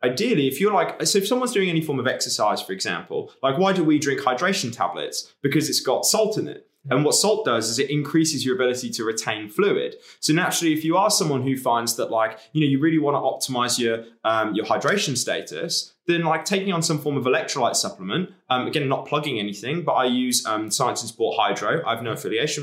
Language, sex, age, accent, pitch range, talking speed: English, male, 20-39, British, 125-160 Hz, 230 wpm